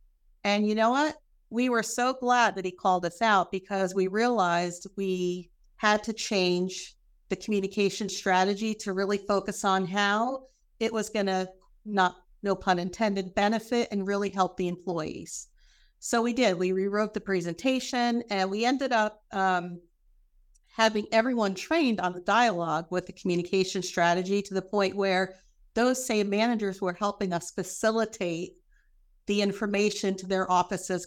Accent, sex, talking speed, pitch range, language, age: American, female, 155 wpm, 185-215 Hz, English, 50-69